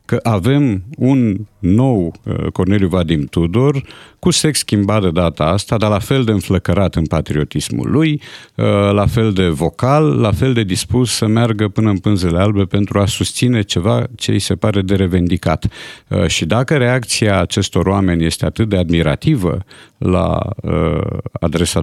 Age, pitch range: 50-69, 95-125 Hz